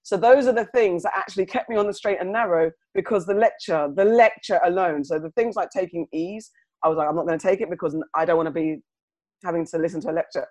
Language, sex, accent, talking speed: English, female, British, 270 wpm